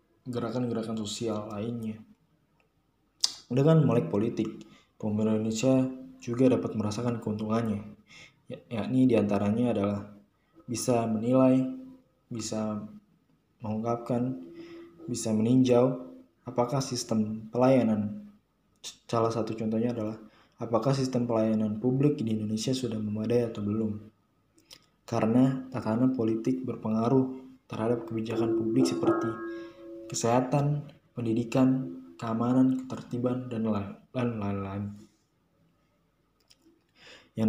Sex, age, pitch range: male, 20-39, 110-130 Hz